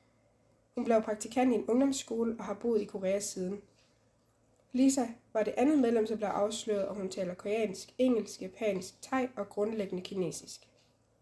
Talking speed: 160 wpm